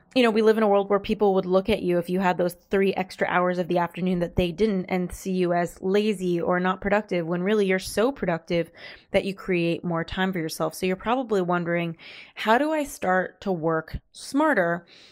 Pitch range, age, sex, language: 175-200 Hz, 20-39, female, English